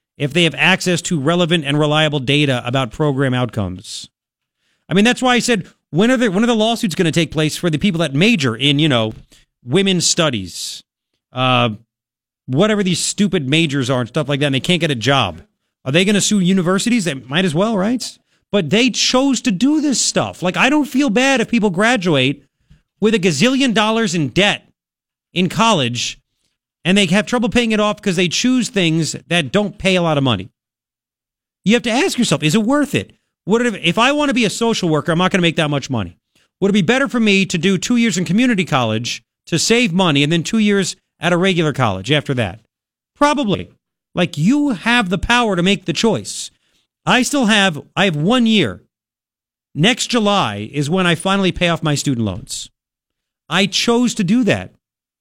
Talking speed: 205 wpm